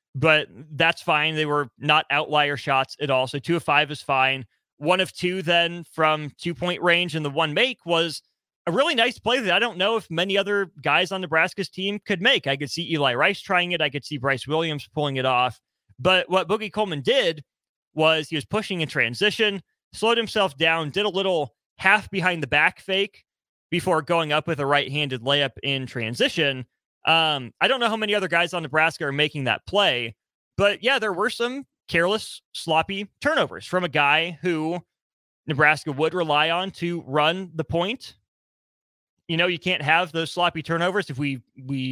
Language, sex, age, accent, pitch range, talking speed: English, male, 30-49, American, 150-190 Hz, 200 wpm